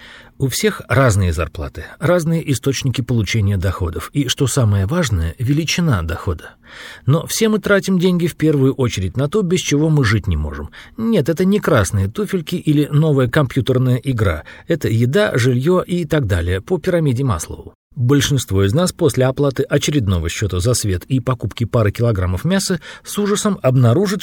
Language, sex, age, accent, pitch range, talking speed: Russian, male, 40-59, native, 110-165 Hz, 160 wpm